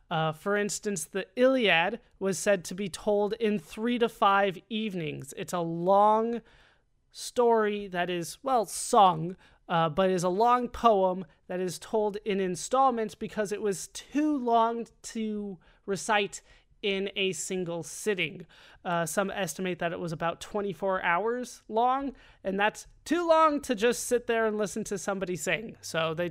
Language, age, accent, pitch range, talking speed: English, 30-49, American, 180-220 Hz, 160 wpm